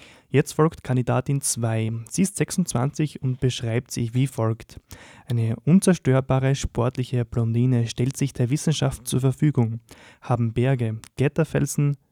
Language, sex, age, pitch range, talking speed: German, male, 20-39, 120-140 Hz, 125 wpm